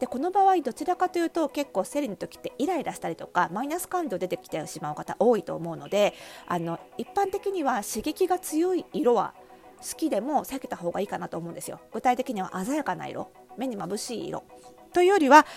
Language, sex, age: Japanese, female, 40-59